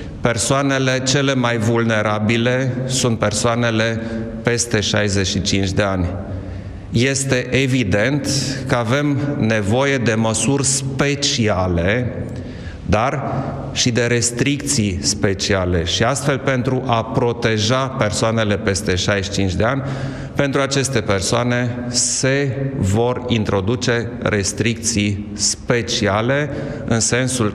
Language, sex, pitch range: Romanian, male, 105-130 Hz